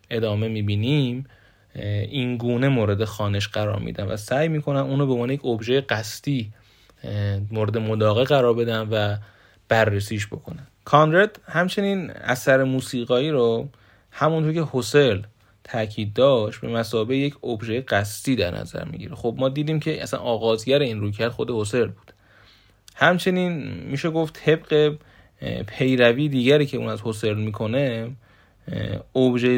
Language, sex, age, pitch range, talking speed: Persian, male, 30-49, 105-135 Hz, 135 wpm